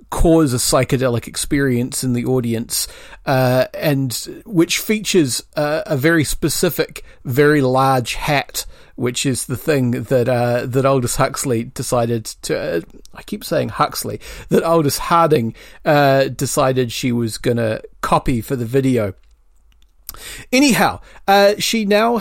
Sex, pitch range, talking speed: male, 130-185 Hz, 135 wpm